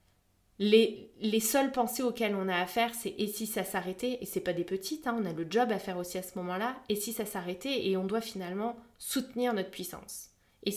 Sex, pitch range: female, 175-220 Hz